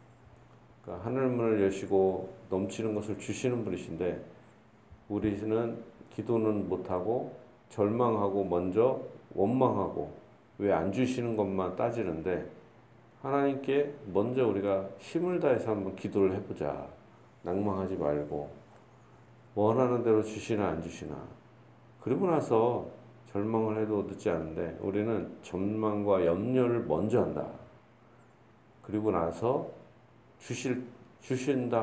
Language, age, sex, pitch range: Korean, 40-59, male, 100-125 Hz